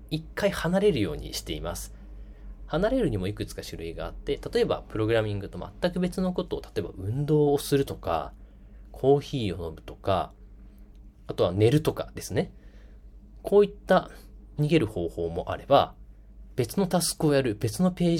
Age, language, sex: 20-39, Japanese, male